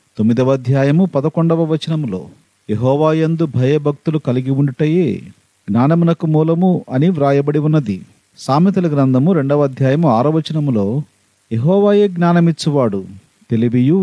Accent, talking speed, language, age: native, 95 wpm, Telugu, 40-59